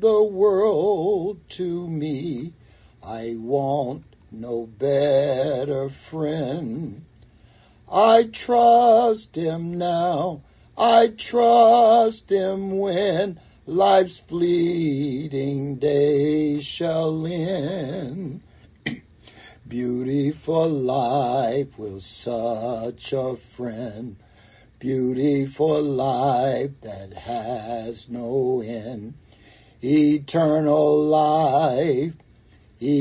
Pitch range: 120-170 Hz